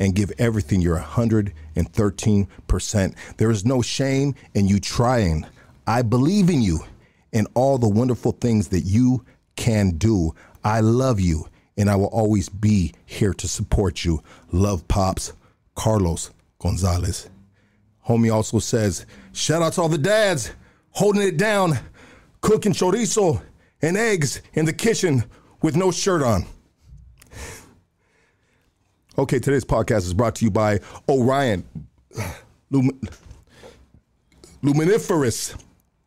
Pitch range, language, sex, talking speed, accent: 100-135 Hz, English, male, 125 wpm, American